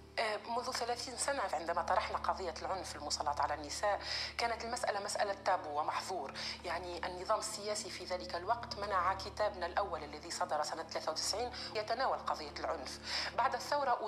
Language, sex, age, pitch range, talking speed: Arabic, female, 40-59, 185-260 Hz, 140 wpm